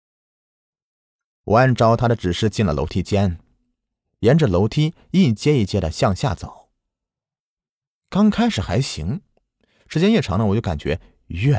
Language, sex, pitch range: Chinese, male, 90-130 Hz